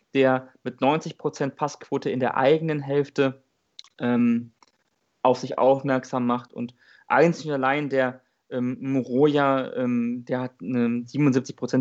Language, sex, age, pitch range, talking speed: German, male, 20-39, 125-155 Hz, 115 wpm